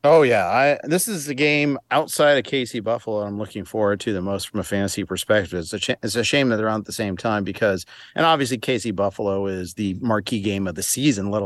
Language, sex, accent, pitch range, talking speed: English, male, American, 100-120 Hz, 245 wpm